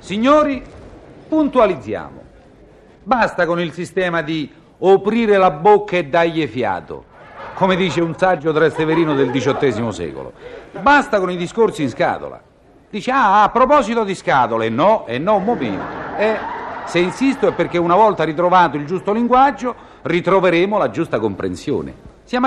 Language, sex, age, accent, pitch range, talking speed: Italian, male, 50-69, native, 160-230 Hz, 145 wpm